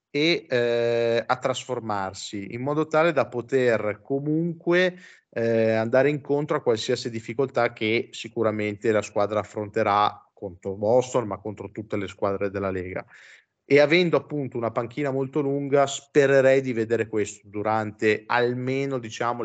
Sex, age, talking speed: male, 20-39, 135 wpm